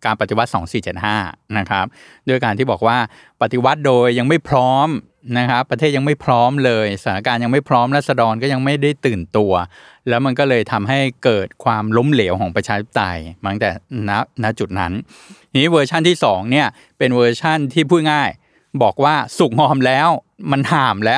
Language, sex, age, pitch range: Thai, male, 20-39, 110-140 Hz